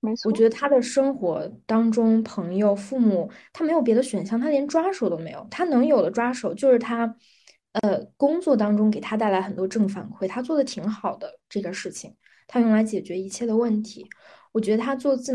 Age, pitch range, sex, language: 20-39, 205-255 Hz, female, Chinese